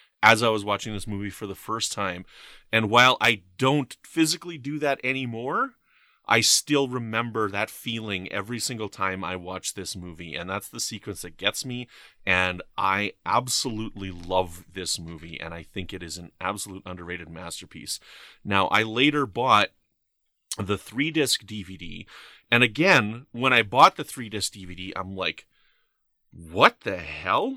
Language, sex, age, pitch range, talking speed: English, male, 30-49, 95-130 Hz, 160 wpm